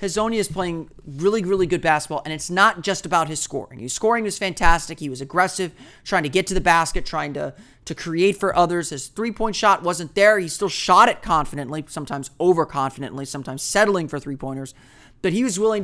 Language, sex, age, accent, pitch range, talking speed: English, male, 30-49, American, 150-195 Hz, 200 wpm